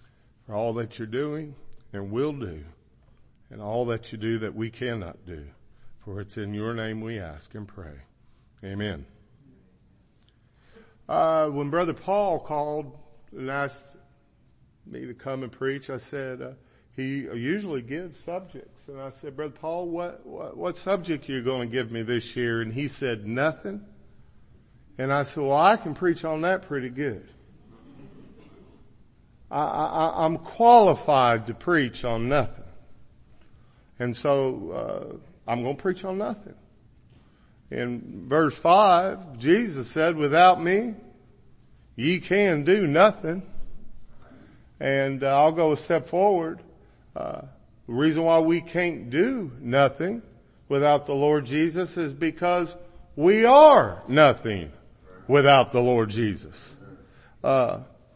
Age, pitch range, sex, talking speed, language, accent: 50-69, 115-165 Hz, male, 140 wpm, English, American